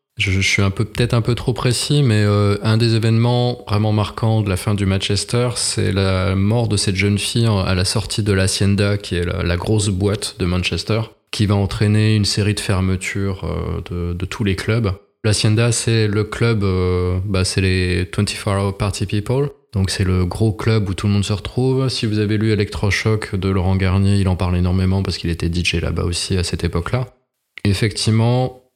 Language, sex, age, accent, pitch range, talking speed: French, male, 20-39, French, 95-110 Hz, 205 wpm